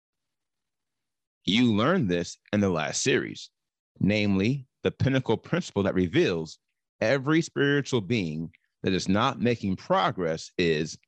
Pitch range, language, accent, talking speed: 95-130 Hz, English, American, 120 wpm